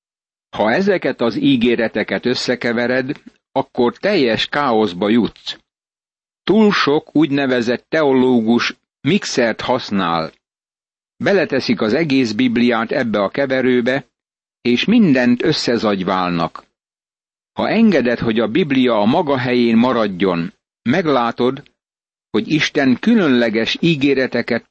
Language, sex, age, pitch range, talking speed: Hungarian, male, 60-79, 115-140 Hz, 95 wpm